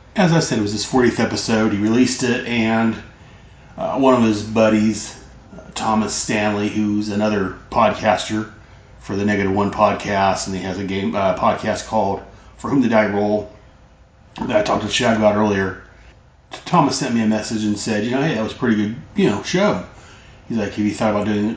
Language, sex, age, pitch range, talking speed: English, male, 30-49, 105-125 Hz, 205 wpm